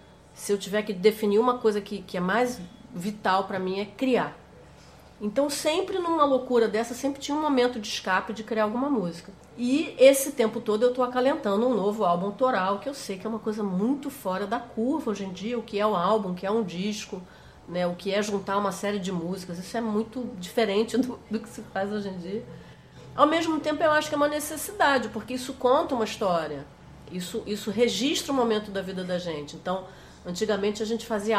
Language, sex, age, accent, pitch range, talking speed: Portuguese, female, 40-59, Brazilian, 195-245 Hz, 220 wpm